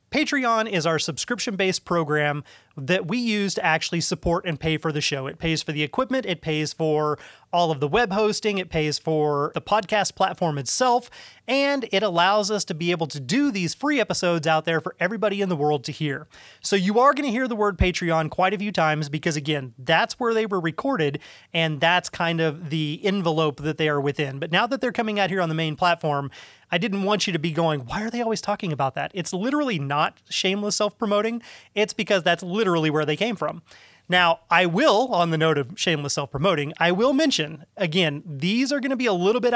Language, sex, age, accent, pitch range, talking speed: English, male, 30-49, American, 160-210 Hz, 220 wpm